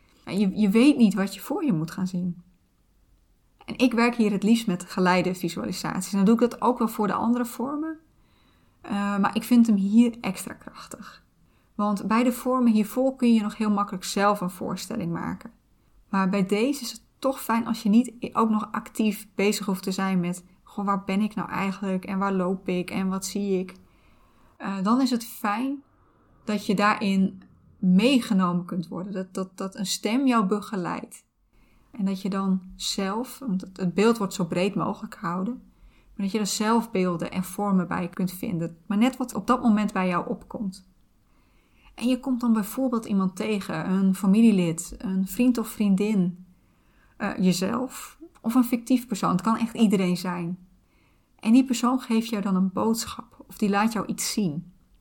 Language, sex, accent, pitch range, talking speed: Dutch, female, Dutch, 185-230 Hz, 190 wpm